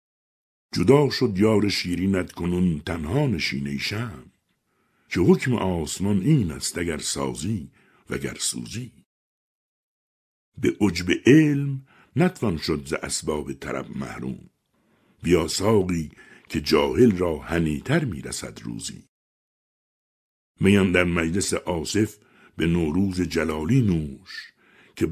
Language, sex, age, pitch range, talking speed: Persian, male, 60-79, 75-105 Hz, 105 wpm